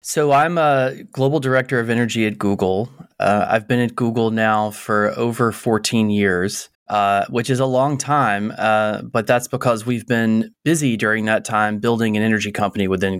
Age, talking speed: 20-39, 180 wpm